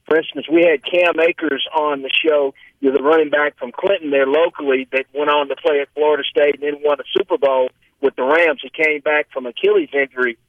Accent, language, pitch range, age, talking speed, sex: American, English, 145-190 Hz, 50-69, 225 wpm, male